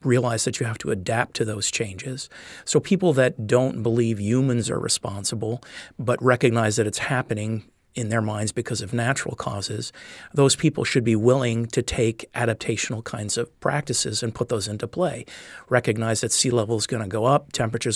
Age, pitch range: 50-69, 110-125 Hz